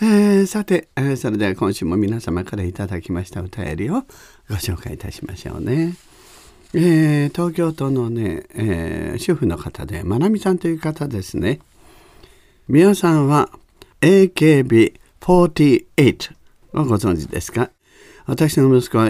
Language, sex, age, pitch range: Japanese, male, 50-69, 90-135 Hz